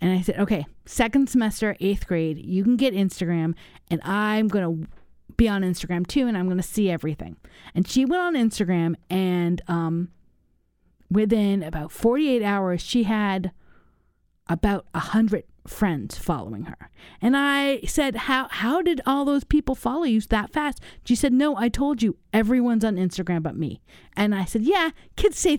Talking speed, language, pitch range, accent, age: 170 wpm, English, 205-295 Hz, American, 40-59